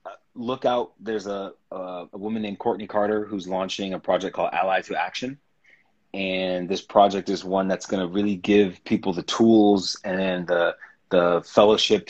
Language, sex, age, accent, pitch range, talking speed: English, male, 30-49, American, 95-125 Hz, 170 wpm